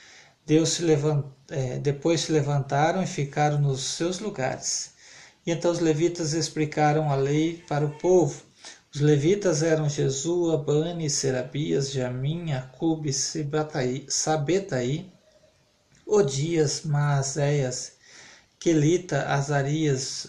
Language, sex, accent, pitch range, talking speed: Portuguese, male, Brazilian, 140-160 Hz, 105 wpm